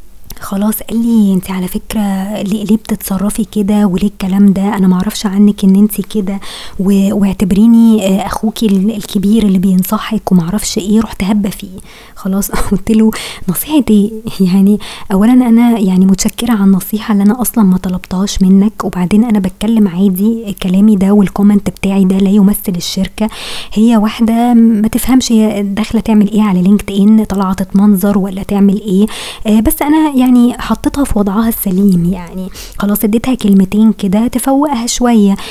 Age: 20-39